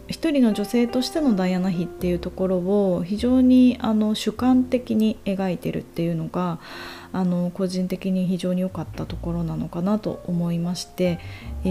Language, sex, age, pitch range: Japanese, female, 20-39, 170-235 Hz